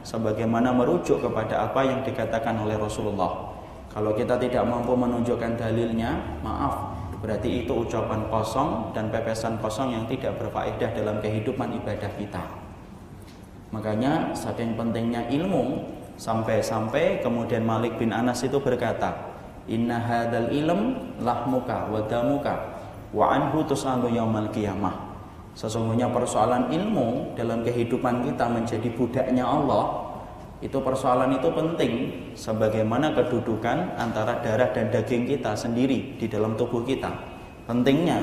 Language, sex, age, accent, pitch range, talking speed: Indonesian, male, 20-39, native, 110-125 Hz, 120 wpm